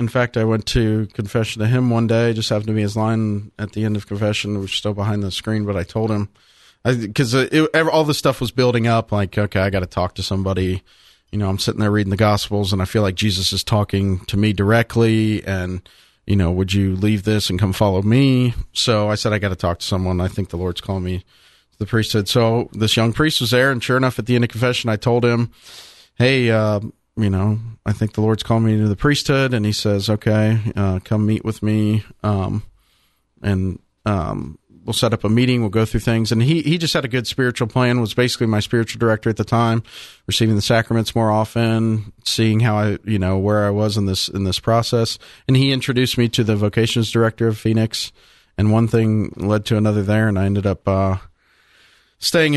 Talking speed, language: 230 wpm, English